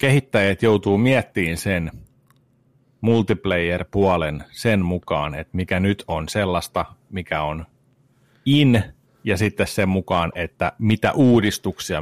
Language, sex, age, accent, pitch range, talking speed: Finnish, male, 30-49, native, 90-110 Hz, 110 wpm